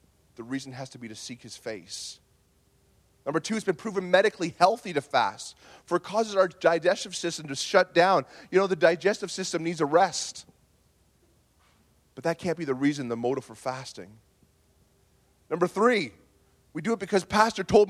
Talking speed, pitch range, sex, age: 180 wpm, 130-200 Hz, male, 30-49